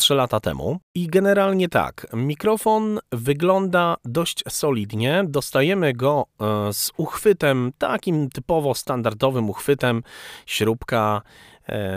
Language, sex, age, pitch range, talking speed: Polish, male, 40-59, 110-170 Hz, 95 wpm